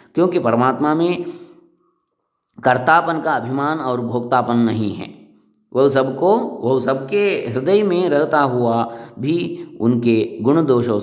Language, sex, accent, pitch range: English, male, Indian, 110-140 Hz